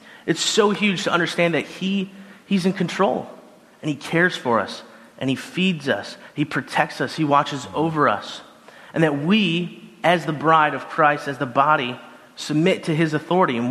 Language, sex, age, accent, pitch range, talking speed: English, male, 30-49, American, 155-195 Hz, 185 wpm